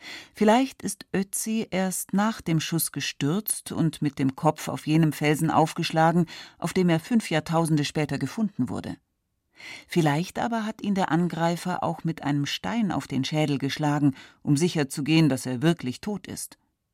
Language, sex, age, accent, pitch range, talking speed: German, female, 40-59, German, 140-185 Hz, 160 wpm